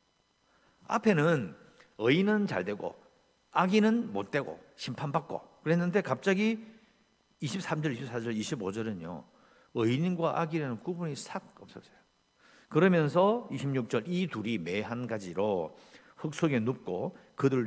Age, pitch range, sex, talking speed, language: 50-69, 125-200 Hz, male, 95 wpm, English